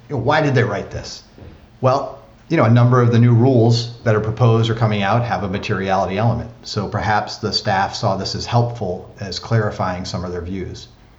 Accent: American